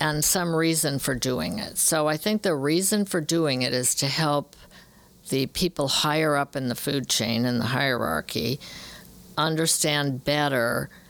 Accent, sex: American, female